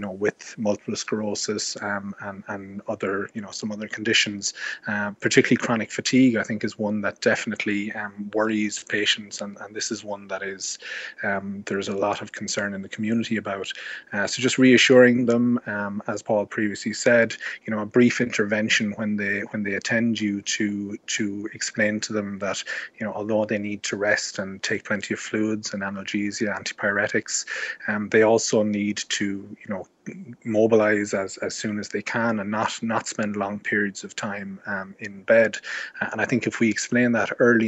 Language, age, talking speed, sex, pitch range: English, 30-49, 190 wpm, male, 100-110 Hz